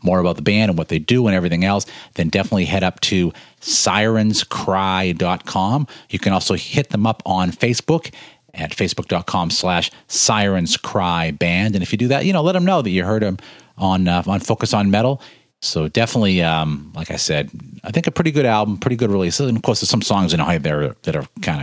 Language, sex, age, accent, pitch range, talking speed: English, male, 40-59, American, 85-110 Hz, 210 wpm